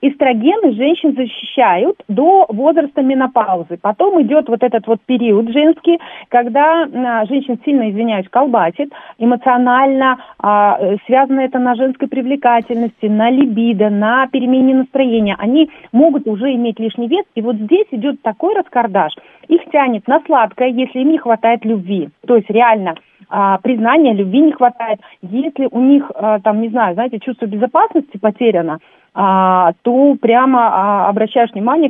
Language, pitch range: Russian, 215-275 Hz